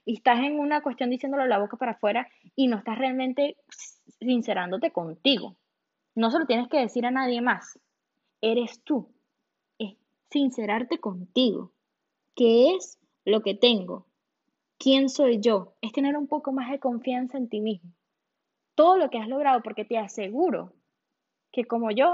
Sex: female